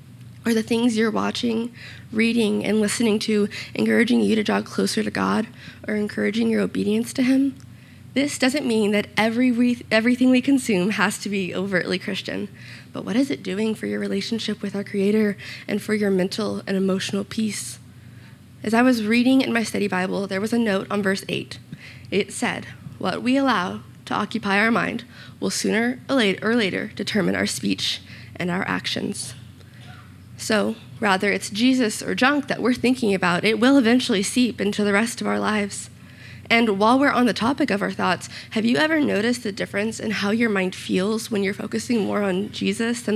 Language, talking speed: English, 185 wpm